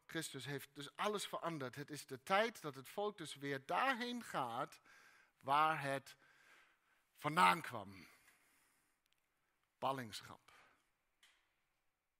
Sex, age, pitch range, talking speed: male, 60-79, 130-175 Hz, 105 wpm